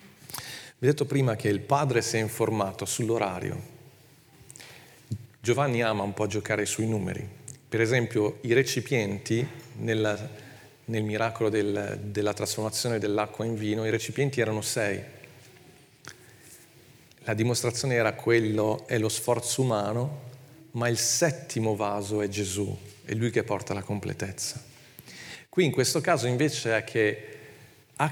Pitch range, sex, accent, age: 105-130 Hz, male, native, 40-59